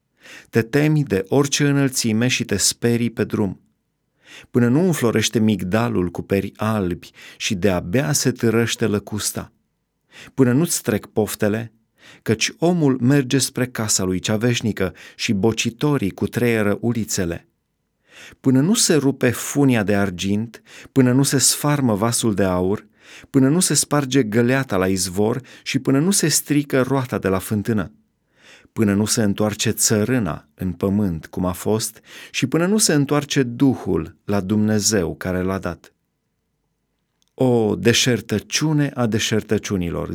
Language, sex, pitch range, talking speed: Romanian, male, 100-130 Hz, 140 wpm